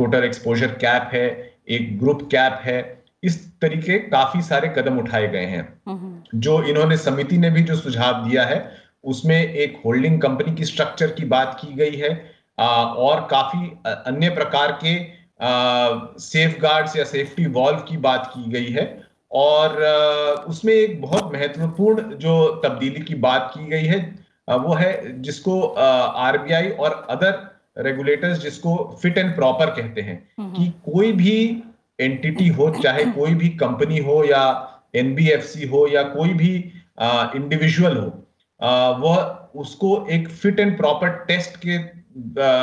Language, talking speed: Hindi, 145 wpm